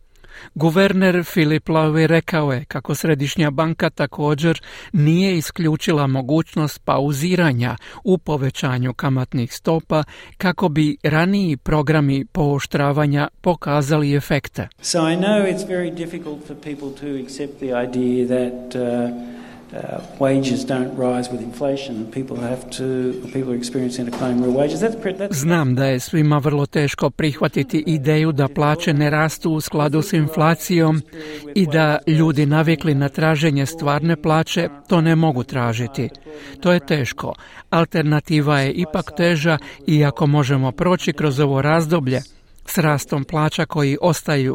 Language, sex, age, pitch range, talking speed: Croatian, male, 50-69, 135-165 Hz, 115 wpm